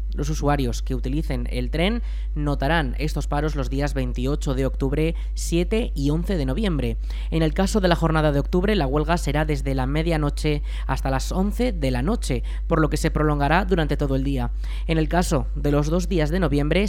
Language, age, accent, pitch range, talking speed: Spanish, 20-39, Spanish, 135-175 Hz, 205 wpm